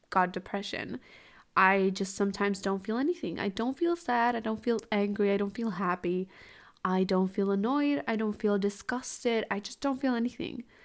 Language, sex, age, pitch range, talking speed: English, female, 20-39, 195-235 Hz, 185 wpm